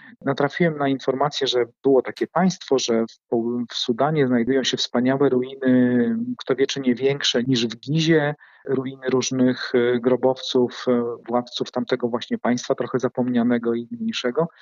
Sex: male